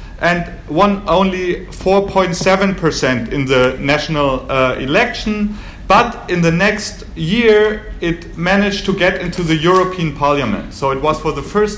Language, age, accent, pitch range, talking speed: English, 40-59, German, 145-190 Hz, 145 wpm